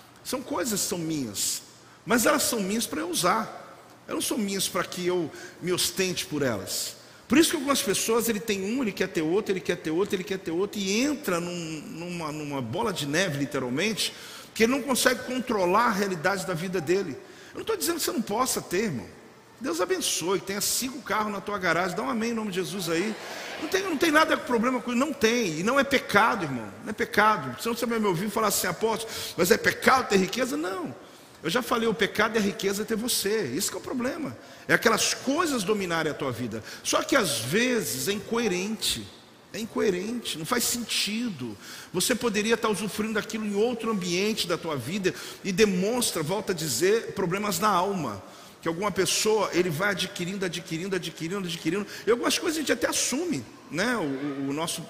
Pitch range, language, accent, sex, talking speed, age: 175-235 Hz, Portuguese, Brazilian, male, 210 wpm, 50-69